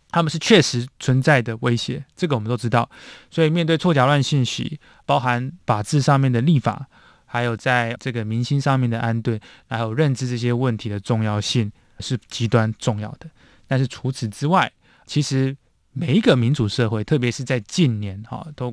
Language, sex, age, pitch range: Chinese, male, 20-39, 115-150 Hz